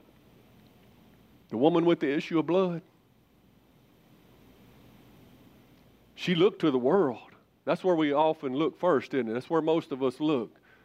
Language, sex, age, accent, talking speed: English, male, 50-69, American, 145 wpm